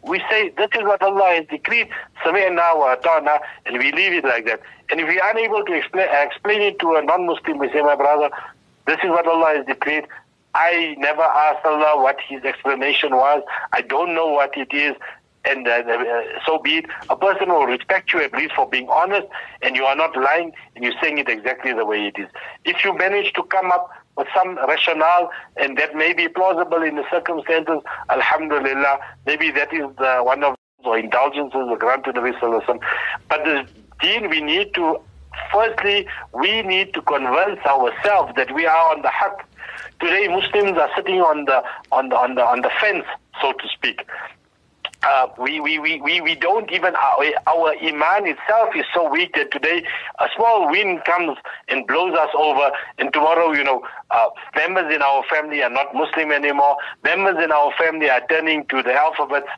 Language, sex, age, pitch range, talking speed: English, male, 60-79, 140-175 Hz, 190 wpm